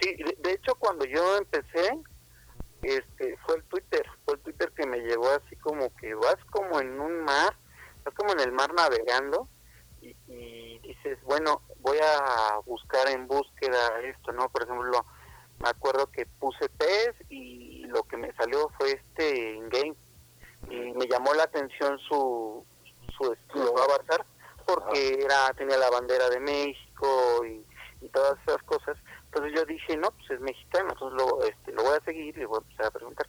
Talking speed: 180 wpm